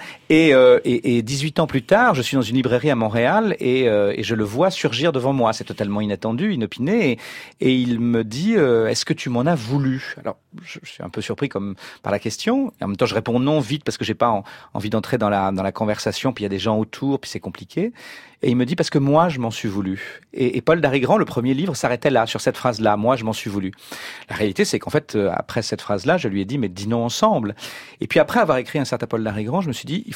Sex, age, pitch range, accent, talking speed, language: male, 40-59, 110-140 Hz, French, 275 wpm, French